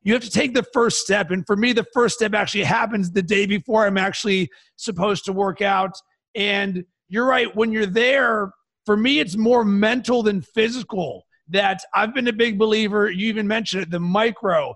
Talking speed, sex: 200 wpm, male